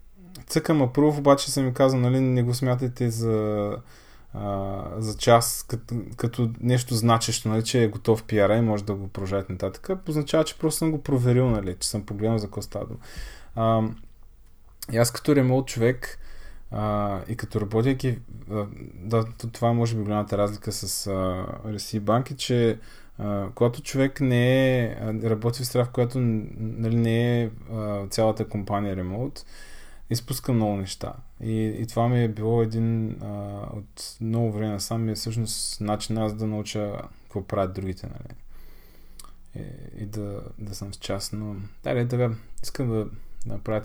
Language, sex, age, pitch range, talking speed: Bulgarian, male, 20-39, 105-125 Hz, 160 wpm